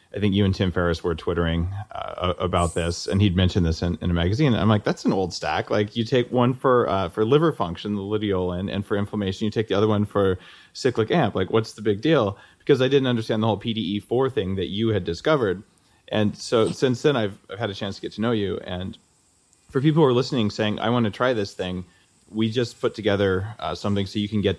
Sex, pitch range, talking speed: male, 90-110 Hz, 245 wpm